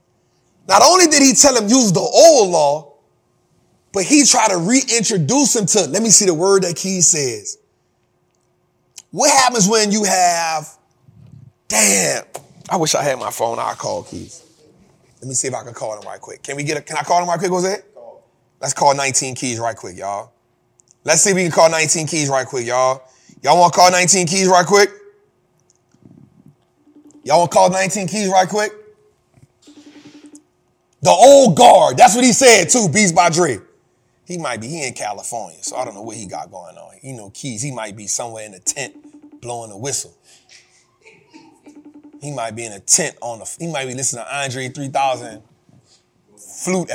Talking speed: 190 wpm